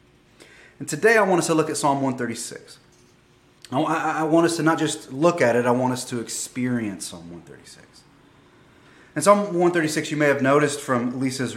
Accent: American